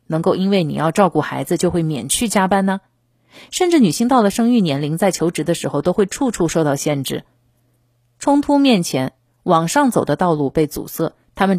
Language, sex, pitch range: Chinese, female, 145-200 Hz